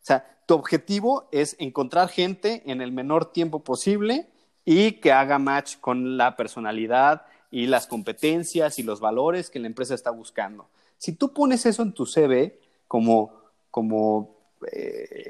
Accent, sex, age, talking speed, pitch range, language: Mexican, male, 30-49, 155 wpm, 125-170 Hz, Spanish